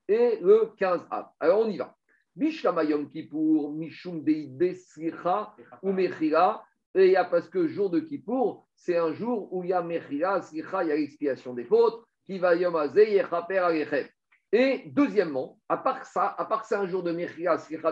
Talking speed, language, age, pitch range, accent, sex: 190 wpm, French, 50-69, 160-265 Hz, French, male